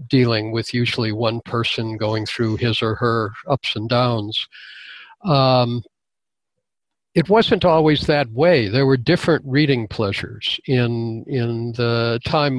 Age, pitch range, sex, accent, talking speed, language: 50-69, 115-150 Hz, male, American, 135 wpm, English